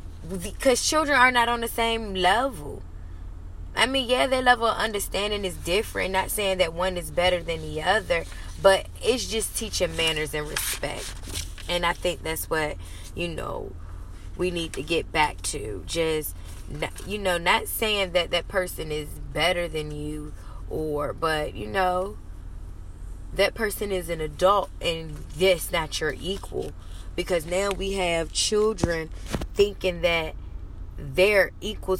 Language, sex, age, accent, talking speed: English, female, 20-39, American, 150 wpm